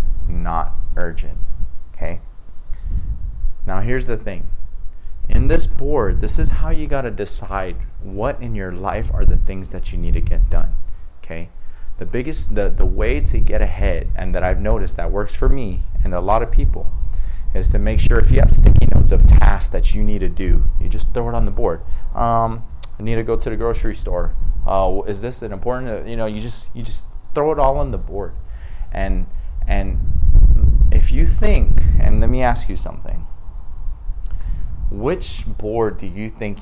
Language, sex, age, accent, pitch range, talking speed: English, male, 30-49, American, 85-105 Hz, 190 wpm